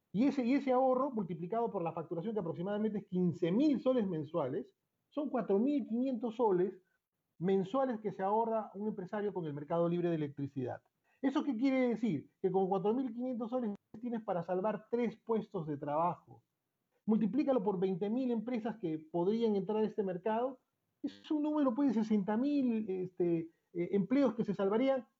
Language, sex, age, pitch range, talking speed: Spanish, male, 40-59, 170-230 Hz, 160 wpm